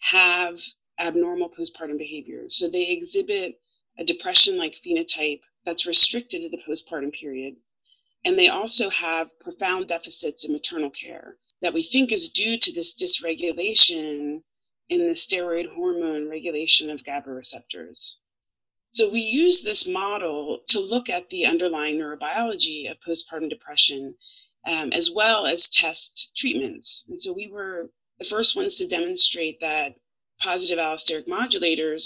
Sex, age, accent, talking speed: female, 30-49, American, 140 wpm